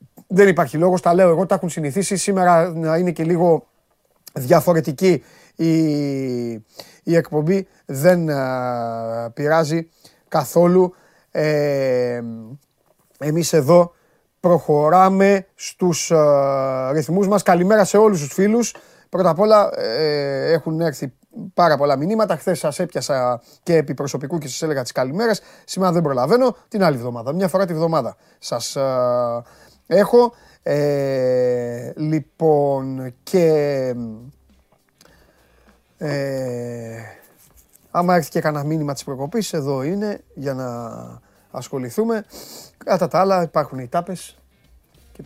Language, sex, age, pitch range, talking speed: Greek, male, 30-49, 130-175 Hz, 120 wpm